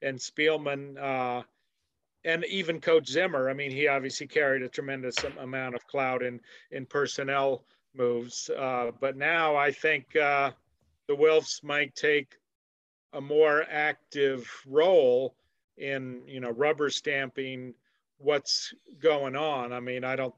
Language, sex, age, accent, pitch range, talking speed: English, male, 40-59, American, 125-145 Hz, 140 wpm